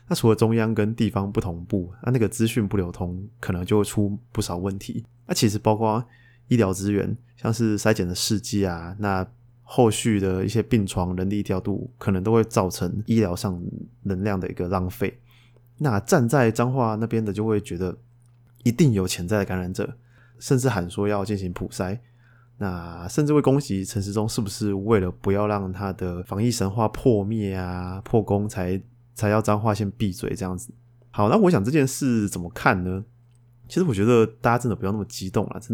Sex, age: male, 20-39